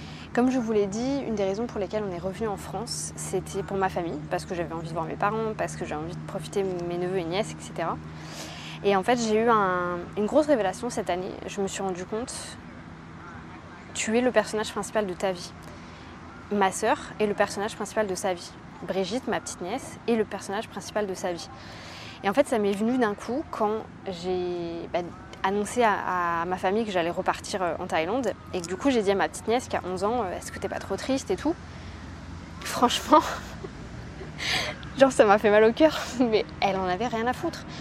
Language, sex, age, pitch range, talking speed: French, female, 20-39, 180-225 Hz, 220 wpm